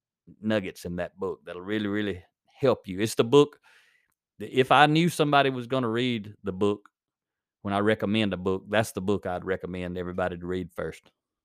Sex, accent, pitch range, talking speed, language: male, American, 100-120 Hz, 190 wpm, English